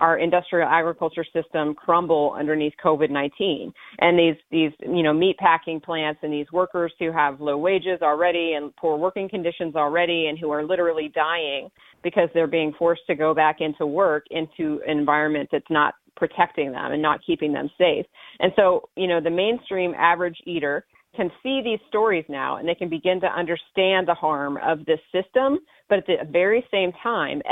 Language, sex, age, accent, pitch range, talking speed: English, female, 40-59, American, 155-180 Hz, 185 wpm